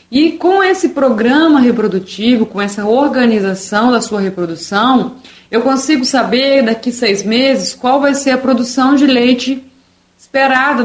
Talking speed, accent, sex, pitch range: 140 wpm, Brazilian, female, 205-255 Hz